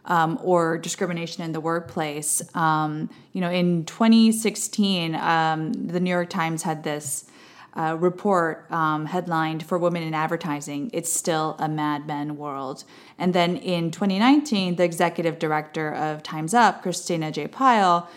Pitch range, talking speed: 155-195 Hz, 150 wpm